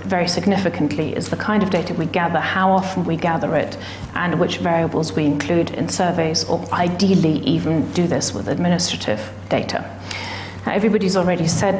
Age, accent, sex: 40-59, British, female